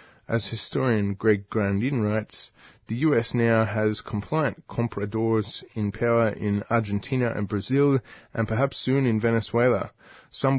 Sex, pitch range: male, 100-115 Hz